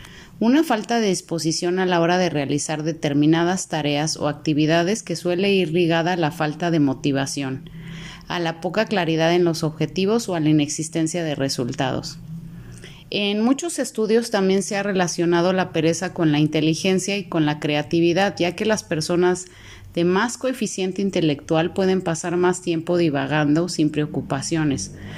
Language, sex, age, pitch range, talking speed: Spanish, female, 30-49, 160-195 Hz, 155 wpm